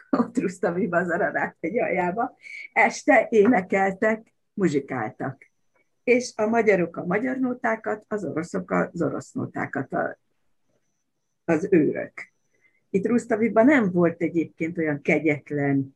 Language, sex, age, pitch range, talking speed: Hungarian, female, 50-69, 145-190 Hz, 110 wpm